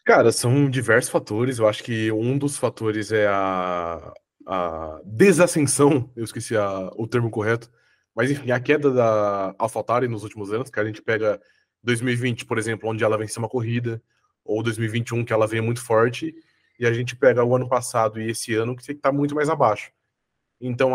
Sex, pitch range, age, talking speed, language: male, 110-140 Hz, 20-39, 195 wpm, Portuguese